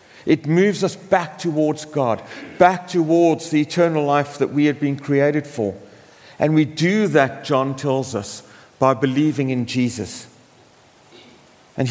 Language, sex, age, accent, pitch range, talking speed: English, male, 50-69, British, 130-165 Hz, 145 wpm